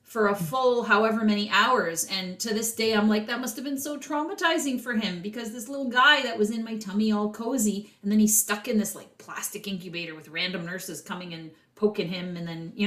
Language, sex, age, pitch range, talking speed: English, female, 30-49, 170-210 Hz, 235 wpm